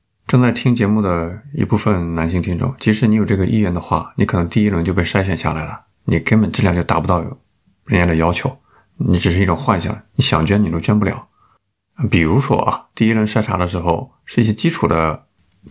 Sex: male